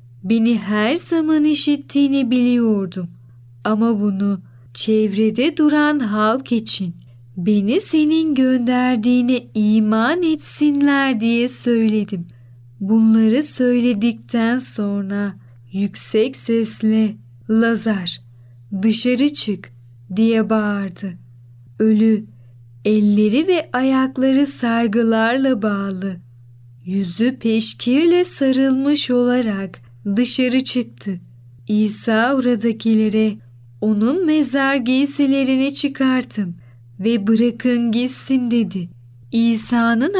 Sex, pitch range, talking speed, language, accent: female, 200-250 Hz, 75 wpm, Turkish, native